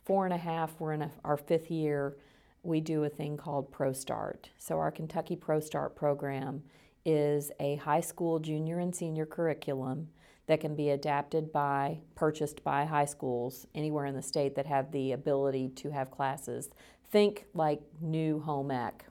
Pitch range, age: 135-155 Hz, 40-59